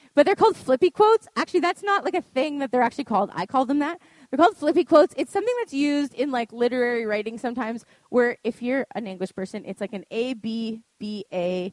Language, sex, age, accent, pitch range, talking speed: English, female, 20-39, American, 210-290 Hz, 230 wpm